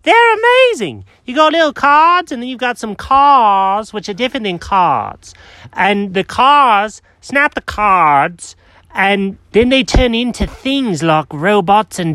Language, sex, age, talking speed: English, male, 30-49, 160 wpm